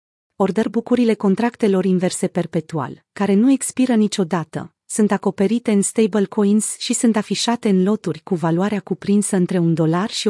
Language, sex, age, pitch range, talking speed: Romanian, female, 30-49, 180-220 Hz, 150 wpm